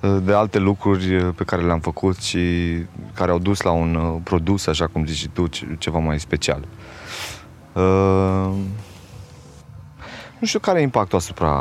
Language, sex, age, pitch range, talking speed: Romanian, male, 20-39, 85-110 Hz, 150 wpm